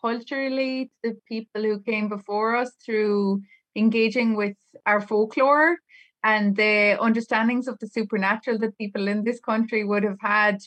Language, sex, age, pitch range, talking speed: English, female, 20-39, 205-245 Hz, 145 wpm